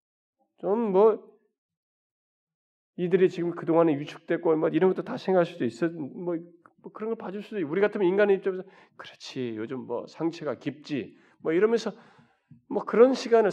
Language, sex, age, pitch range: Korean, male, 40-59, 165-255 Hz